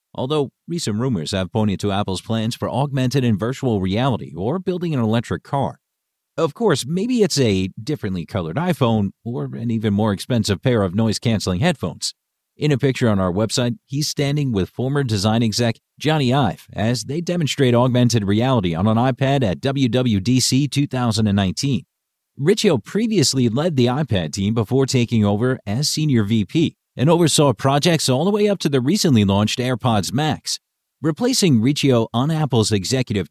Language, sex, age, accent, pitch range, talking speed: English, male, 40-59, American, 110-145 Hz, 160 wpm